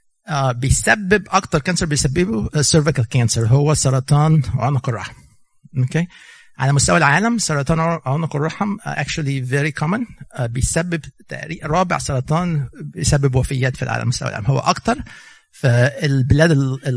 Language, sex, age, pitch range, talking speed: Arabic, male, 50-69, 130-160 Hz, 135 wpm